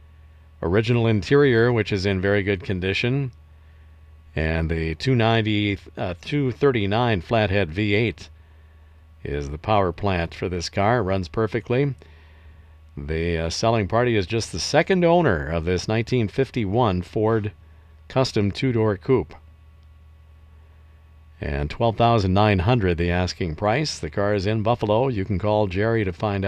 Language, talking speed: English, 125 wpm